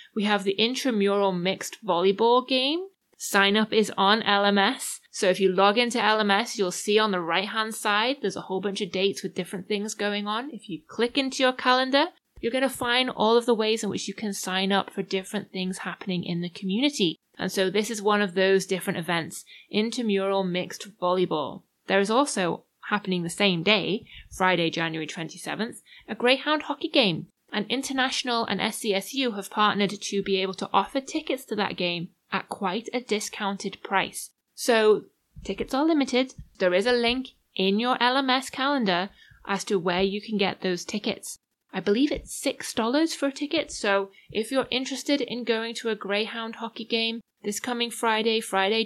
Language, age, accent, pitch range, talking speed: English, 20-39, British, 195-240 Hz, 185 wpm